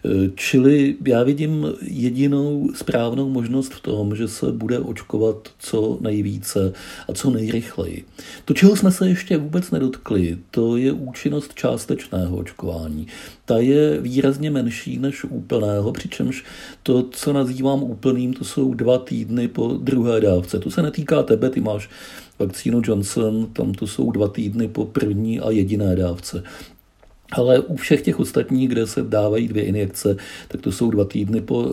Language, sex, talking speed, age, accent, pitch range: Czech, male, 155 wpm, 50-69, native, 105-130 Hz